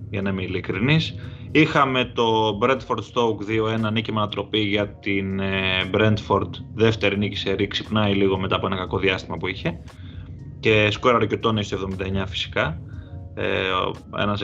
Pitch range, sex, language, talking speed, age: 95-115 Hz, male, Greek, 135 wpm, 20-39